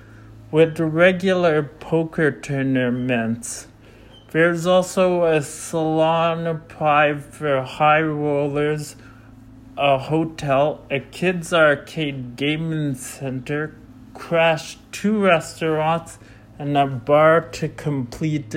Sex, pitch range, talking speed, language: male, 125-160 Hz, 85 wpm, English